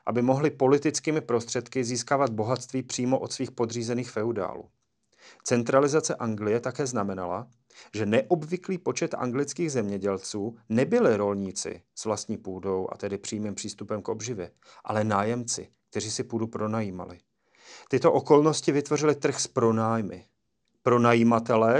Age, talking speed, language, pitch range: 40-59, 120 wpm, Slovak, 115-145 Hz